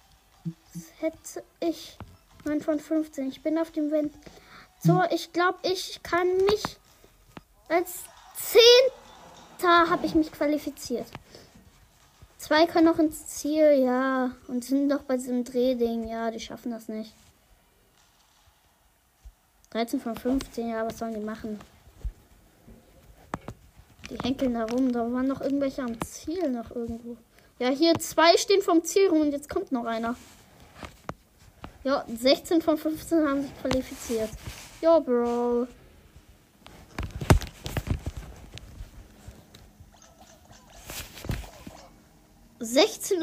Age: 20-39